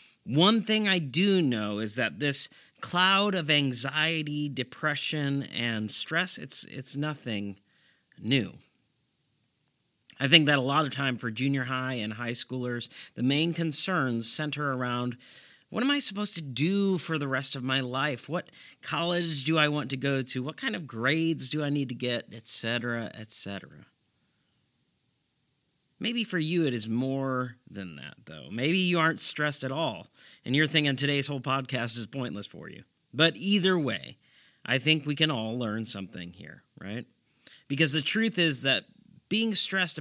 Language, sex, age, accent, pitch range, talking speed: English, male, 40-59, American, 125-165 Hz, 170 wpm